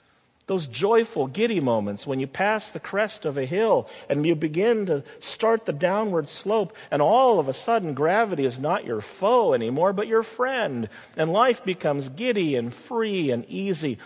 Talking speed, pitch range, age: 180 wpm, 135-210 Hz, 50-69